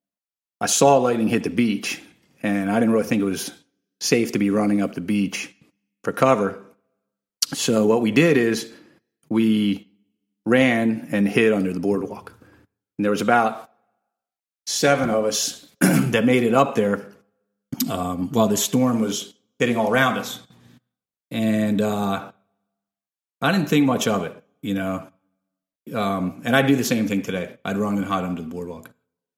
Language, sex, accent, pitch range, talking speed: English, male, American, 100-125 Hz, 165 wpm